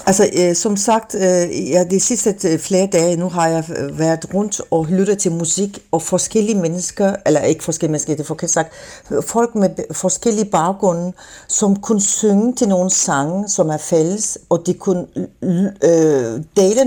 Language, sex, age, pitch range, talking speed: Danish, female, 60-79, 155-195 Hz, 140 wpm